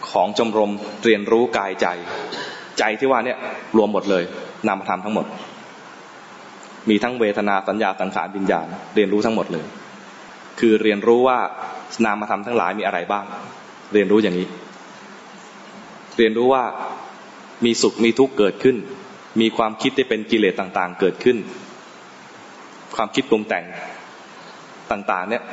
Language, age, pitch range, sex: English, 20-39, 100-115 Hz, male